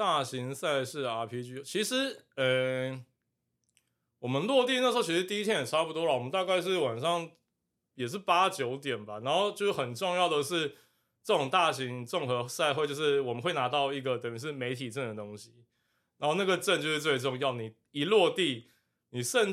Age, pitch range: 20-39, 125-180 Hz